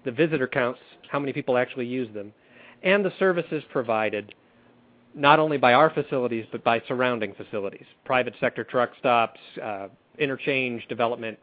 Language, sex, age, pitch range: English, male, 40-59, 115-140 Hz